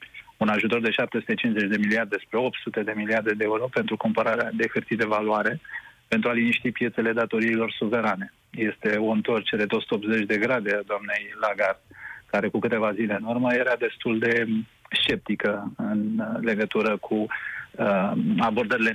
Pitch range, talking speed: 110-135 Hz, 150 wpm